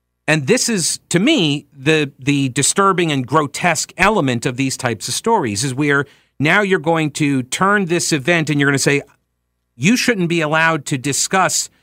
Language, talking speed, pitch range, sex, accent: English, 185 wpm, 125-185 Hz, male, American